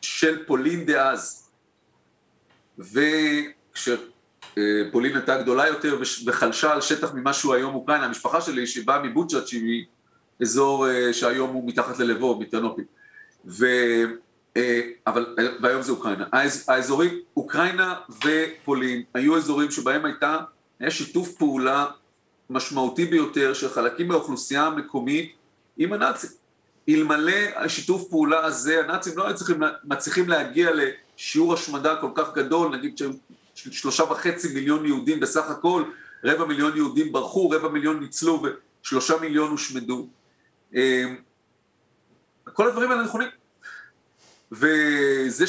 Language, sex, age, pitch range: Hebrew, male, 40-59, 135-200 Hz